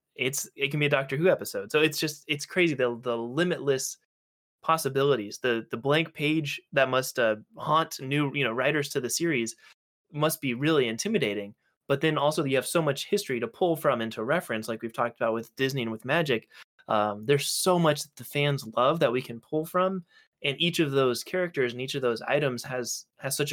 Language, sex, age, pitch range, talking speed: English, male, 20-39, 120-150 Hz, 215 wpm